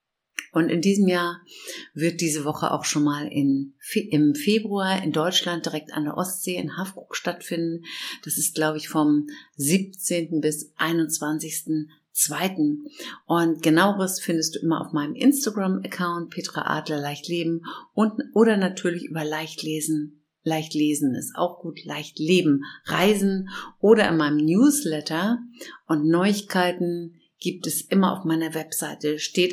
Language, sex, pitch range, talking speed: German, female, 155-180 Hz, 140 wpm